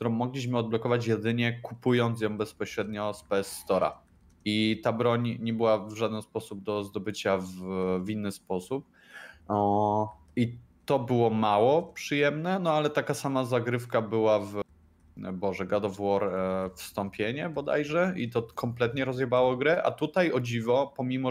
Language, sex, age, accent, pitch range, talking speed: Polish, male, 20-39, native, 100-120 Hz, 155 wpm